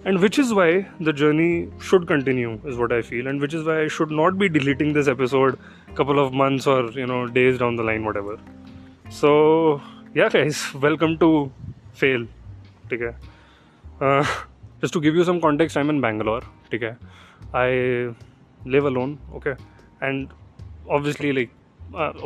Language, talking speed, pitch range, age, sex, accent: Hindi, 160 wpm, 115-160 Hz, 20-39, male, native